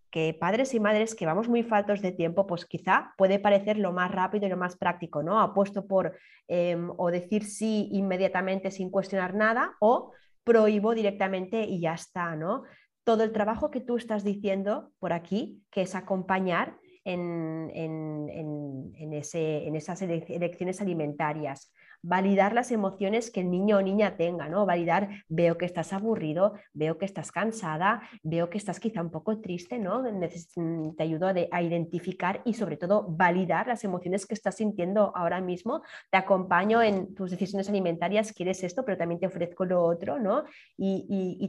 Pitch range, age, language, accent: 170-205 Hz, 20-39, Spanish, Spanish